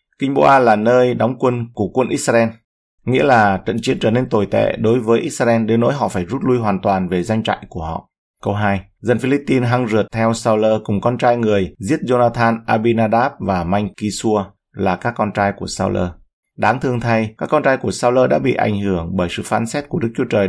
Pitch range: 100-125 Hz